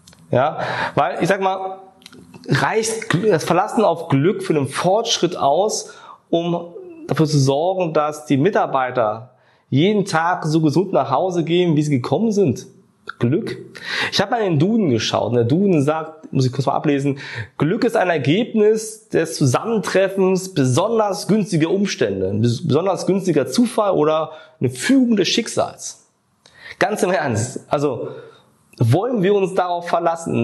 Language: German